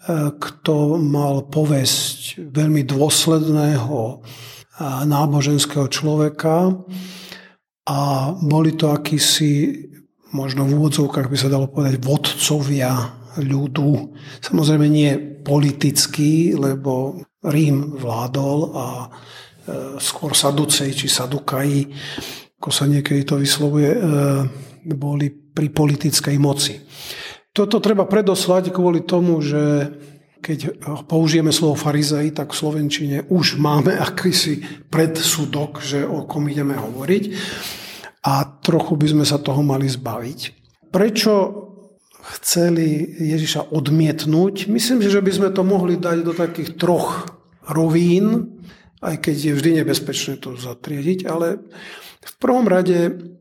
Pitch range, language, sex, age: 140-165 Hz, Slovak, male, 50-69